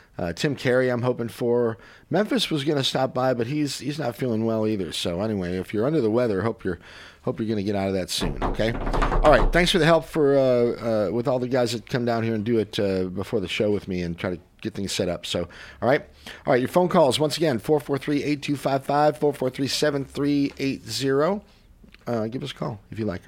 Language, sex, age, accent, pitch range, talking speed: English, male, 50-69, American, 100-130 Hz, 230 wpm